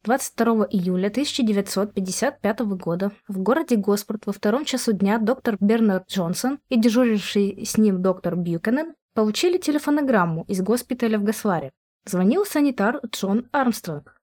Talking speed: 125 wpm